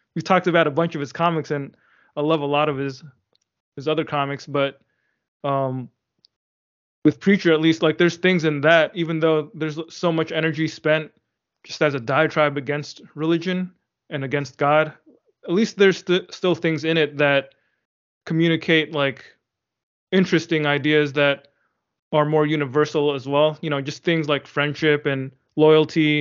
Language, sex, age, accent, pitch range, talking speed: English, male, 20-39, American, 140-160 Hz, 165 wpm